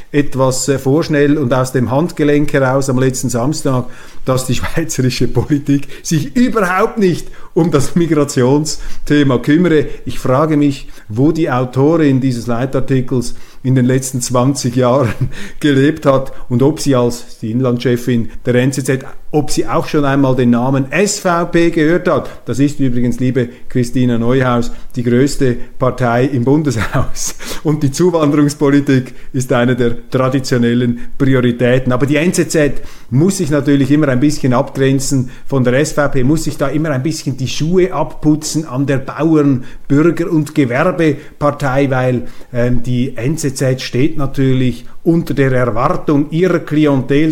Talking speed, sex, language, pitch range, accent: 140 wpm, male, German, 125-150 Hz, Austrian